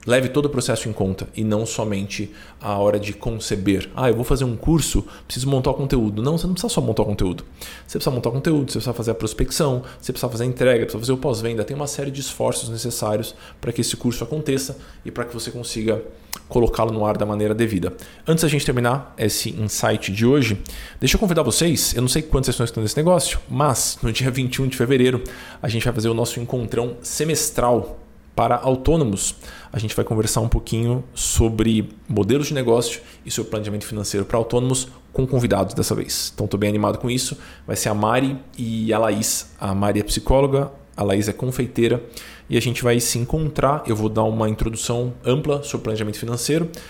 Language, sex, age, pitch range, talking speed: Portuguese, male, 20-39, 110-130 Hz, 210 wpm